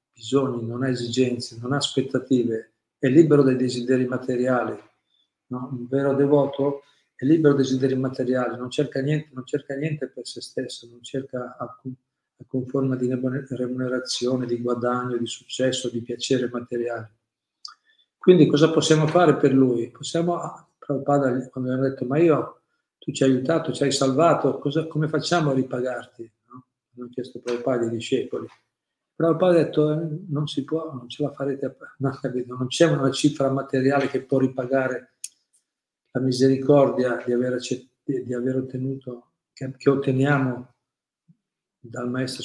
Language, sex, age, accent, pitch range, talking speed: Italian, male, 50-69, native, 125-145 Hz, 155 wpm